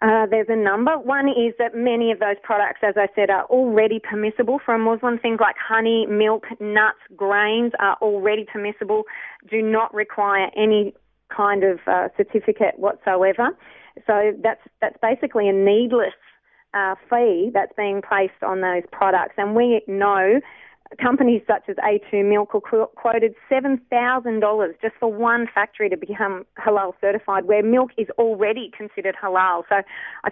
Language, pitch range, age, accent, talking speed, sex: English, 200-230 Hz, 30-49, Australian, 155 wpm, female